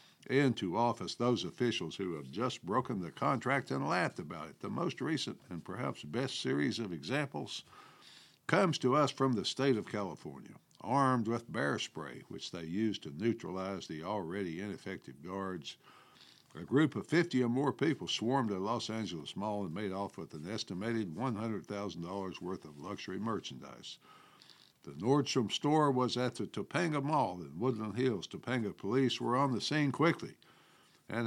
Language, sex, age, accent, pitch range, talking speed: English, male, 60-79, American, 100-135 Hz, 165 wpm